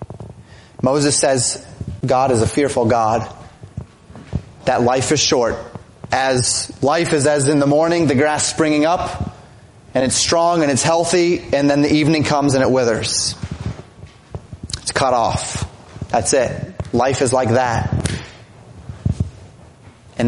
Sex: male